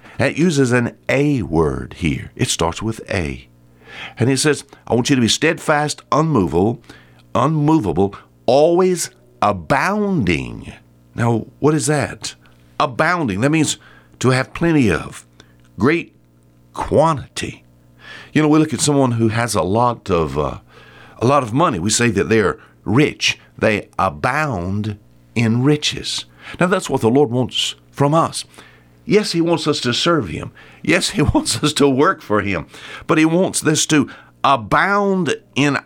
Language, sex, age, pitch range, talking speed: English, male, 60-79, 95-150 Hz, 155 wpm